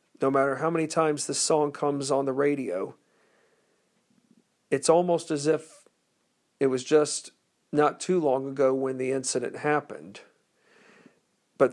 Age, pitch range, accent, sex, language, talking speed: 40-59, 135-165 Hz, American, male, English, 140 wpm